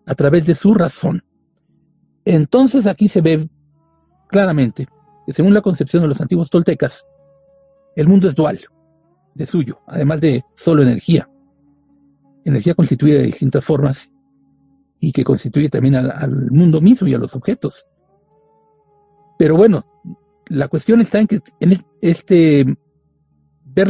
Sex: male